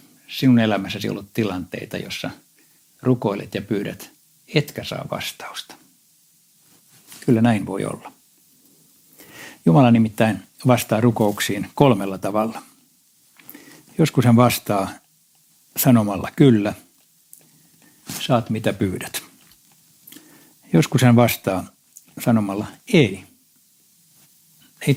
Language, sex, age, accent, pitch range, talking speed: Finnish, male, 60-79, native, 105-150 Hz, 85 wpm